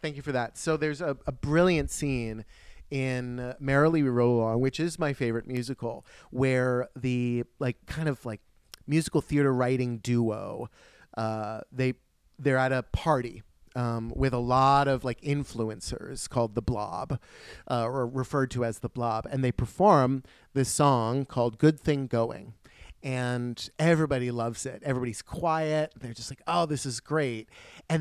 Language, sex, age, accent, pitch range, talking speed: English, male, 30-49, American, 120-155 Hz, 165 wpm